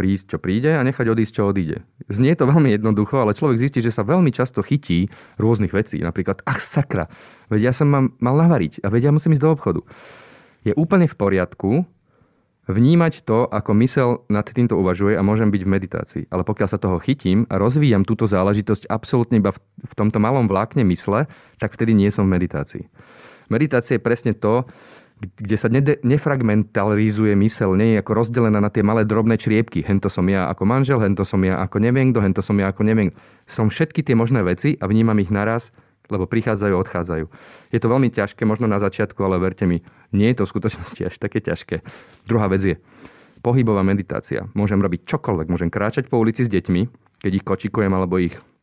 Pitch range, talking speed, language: 95-120 Hz, 195 wpm, Slovak